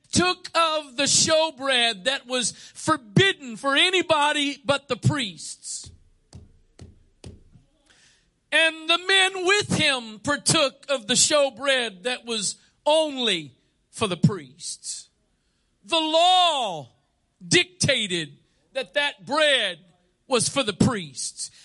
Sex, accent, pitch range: male, American, 240-290 Hz